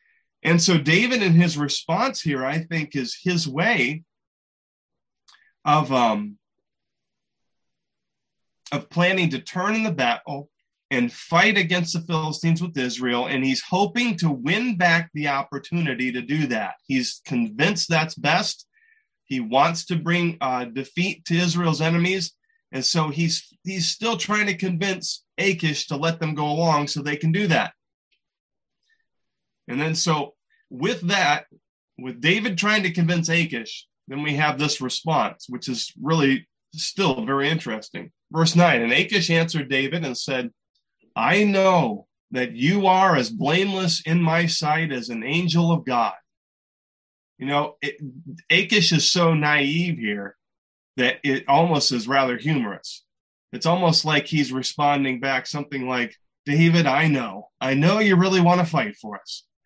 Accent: American